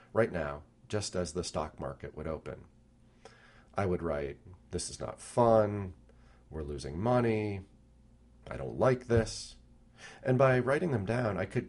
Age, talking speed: 40-59, 155 wpm